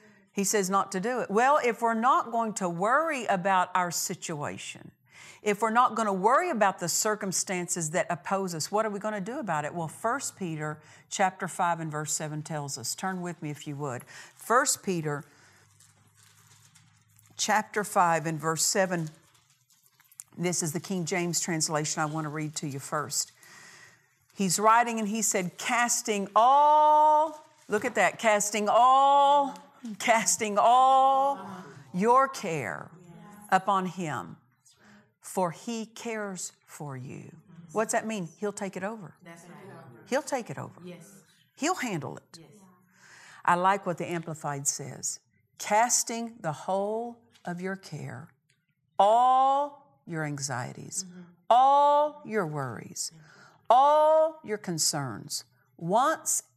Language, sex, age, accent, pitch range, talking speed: English, female, 50-69, American, 155-220 Hz, 140 wpm